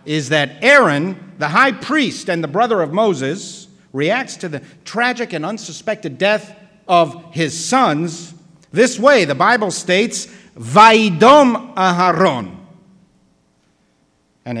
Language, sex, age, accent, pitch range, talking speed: English, male, 50-69, American, 130-215 Hz, 120 wpm